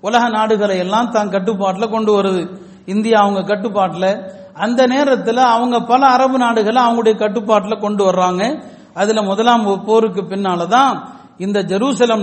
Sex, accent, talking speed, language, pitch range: male, native, 115 wpm, Tamil, 190-230 Hz